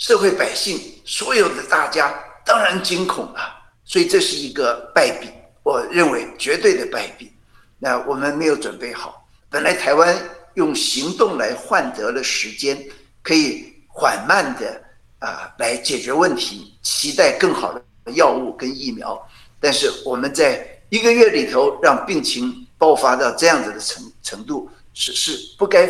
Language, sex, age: Chinese, male, 50-69